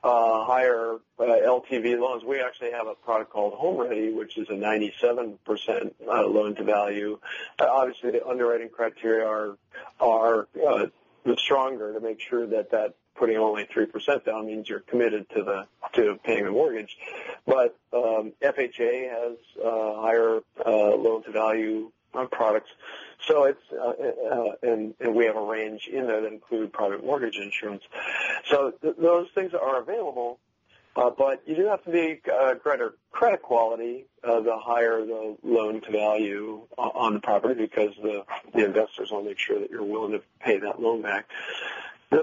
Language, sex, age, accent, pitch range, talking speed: English, male, 40-59, American, 110-170 Hz, 170 wpm